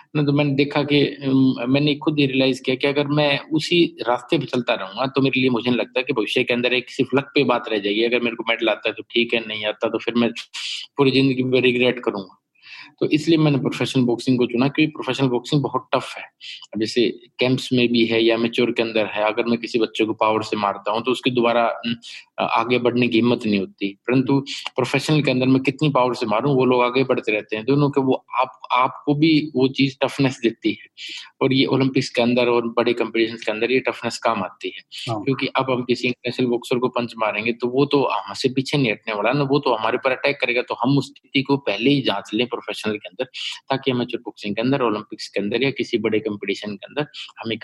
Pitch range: 115-140 Hz